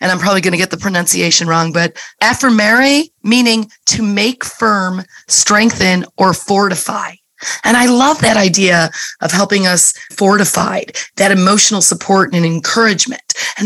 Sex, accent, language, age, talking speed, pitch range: female, American, English, 30-49, 145 wpm, 195-245 Hz